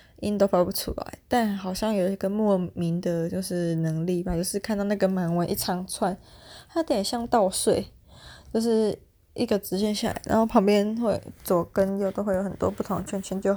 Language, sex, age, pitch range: Chinese, female, 20-39, 180-210 Hz